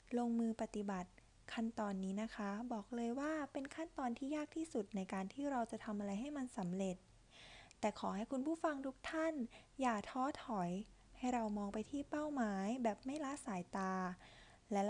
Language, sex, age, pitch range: Thai, female, 20-39, 200-260 Hz